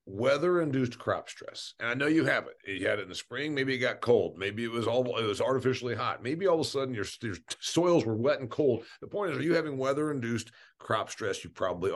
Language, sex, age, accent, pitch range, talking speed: English, male, 50-69, American, 110-140 Hz, 250 wpm